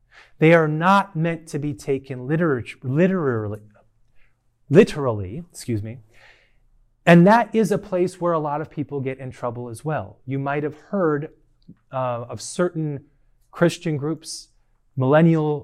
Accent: American